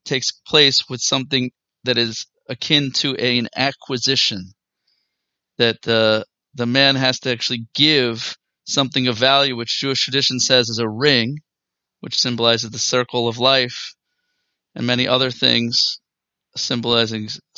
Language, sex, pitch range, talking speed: English, male, 120-135 Hz, 135 wpm